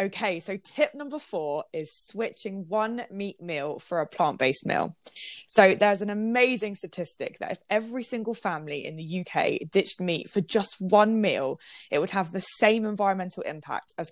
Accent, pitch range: British, 165-220 Hz